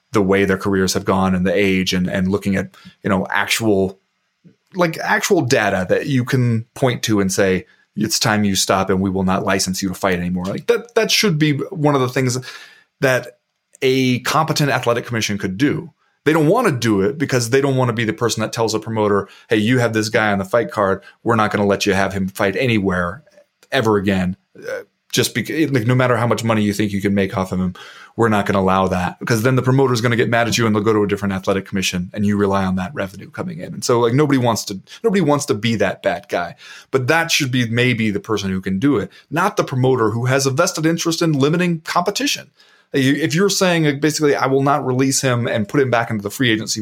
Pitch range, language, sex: 100-140 Hz, English, male